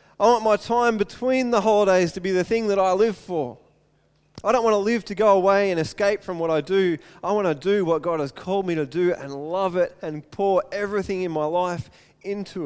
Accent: Australian